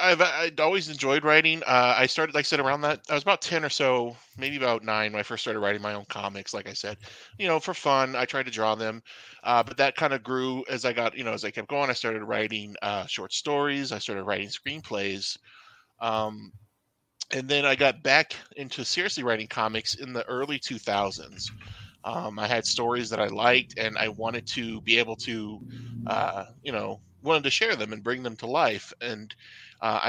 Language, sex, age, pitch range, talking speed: English, male, 20-39, 110-130 Hz, 215 wpm